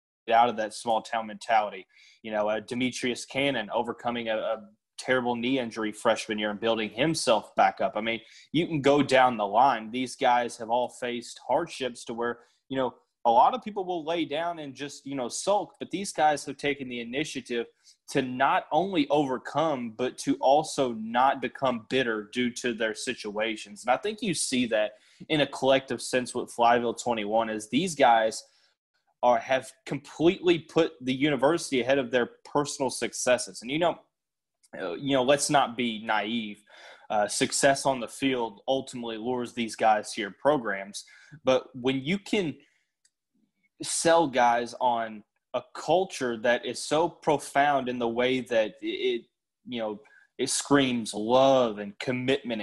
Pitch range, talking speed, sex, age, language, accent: 115-145 Hz, 170 wpm, male, 20-39, English, American